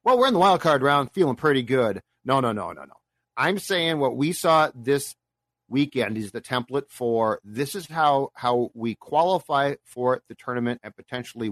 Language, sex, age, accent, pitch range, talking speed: English, male, 40-59, American, 125-175 Hz, 195 wpm